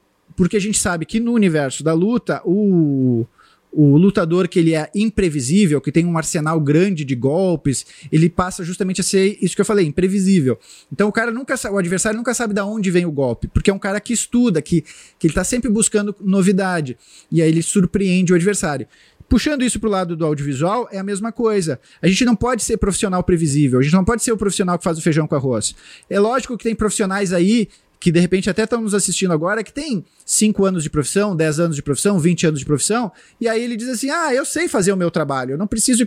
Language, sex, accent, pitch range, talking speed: Portuguese, male, Brazilian, 165-215 Hz, 230 wpm